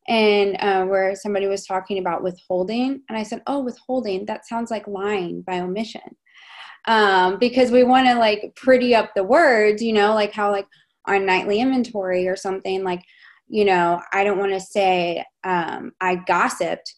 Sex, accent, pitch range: female, American, 175-220 Hz